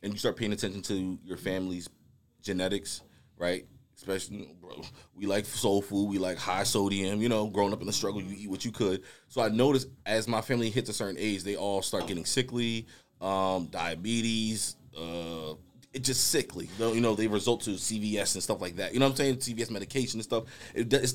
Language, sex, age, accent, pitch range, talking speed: English, male, 20-39, American, 90-110 Hz, 205 wpm